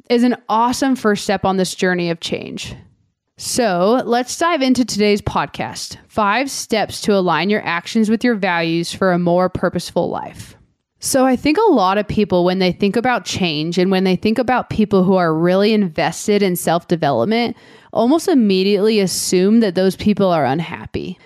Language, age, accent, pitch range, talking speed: English, 20-39, American, 185-245 Hz, 175 wpm